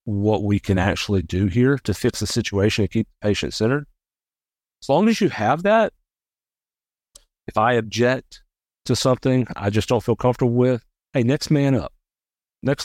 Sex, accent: male, American